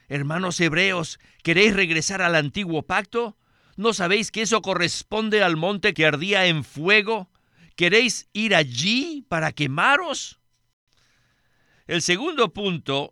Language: Spanish